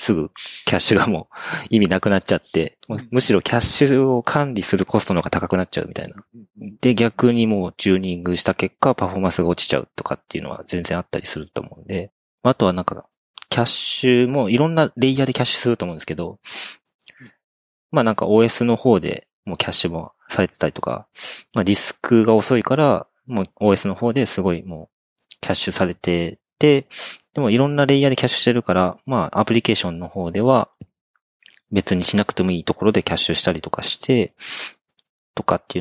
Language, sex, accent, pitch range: Japanese, male, native, 95-125 Hz